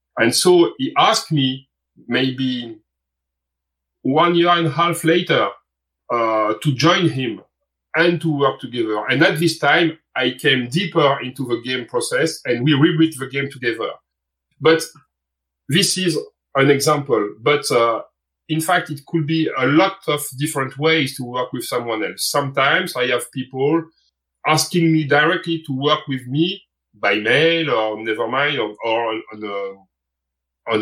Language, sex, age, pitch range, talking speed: English, male, 40-59, 120-165 Hz, 155 wpm